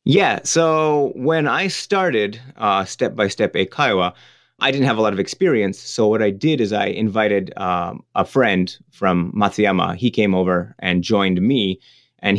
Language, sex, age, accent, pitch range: Japanese, male, 30-49, American, 95-125 Hz